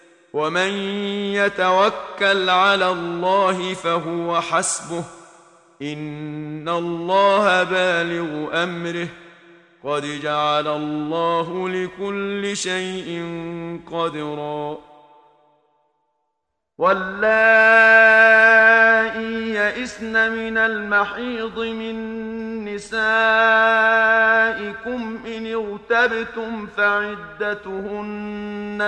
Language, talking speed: Arabic, 55 wpm